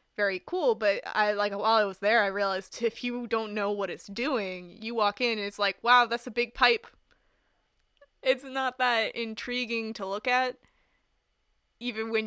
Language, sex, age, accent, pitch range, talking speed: English, female, 20-39, American, 200-245 Hz, 185 wpm